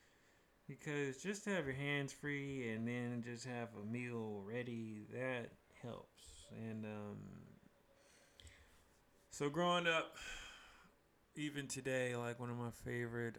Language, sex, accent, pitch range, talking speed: English, male, American, 115-140 Hz, 125 wpm